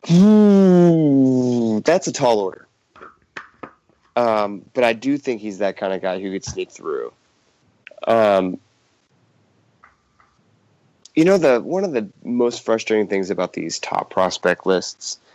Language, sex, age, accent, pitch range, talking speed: English, male, 30-49, American, 100-130 Hz, 135 wpm